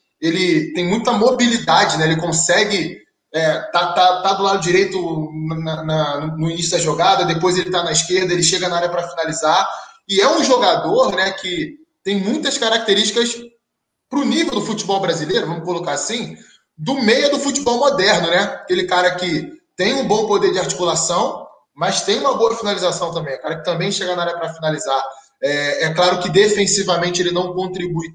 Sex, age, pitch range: male, 20-39, 175-220 Hz